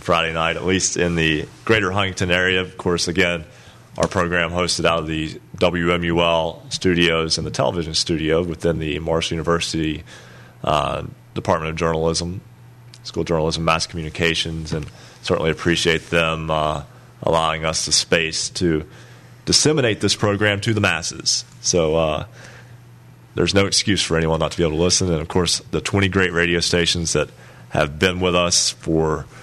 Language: English